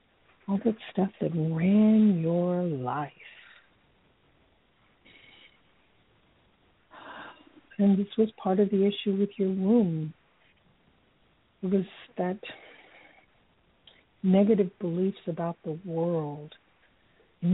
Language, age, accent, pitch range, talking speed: English, 60-79, American, 165-200 Hz, 90 wpm